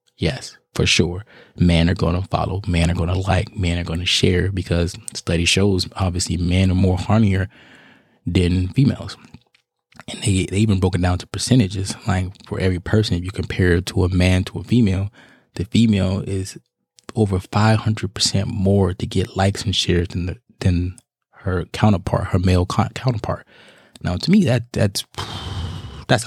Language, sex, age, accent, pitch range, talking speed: English, male, 20-39, American, 90-105 Hz, 165 wpm